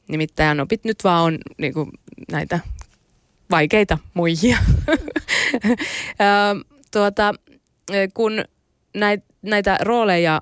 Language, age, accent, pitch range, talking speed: Finnish, 20-39, native, 150-190 Hz, 80 wpm